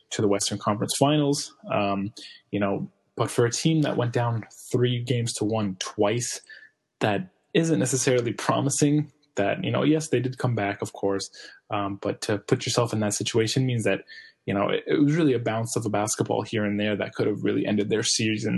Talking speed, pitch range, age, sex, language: 210 wpm, 100-120 Hz, 20-39, male, English